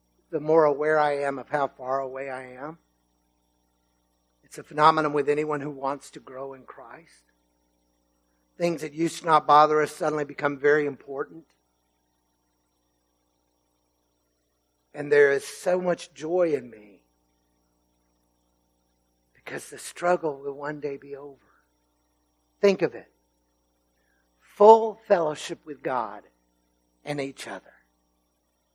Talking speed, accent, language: 125 wpm, American, English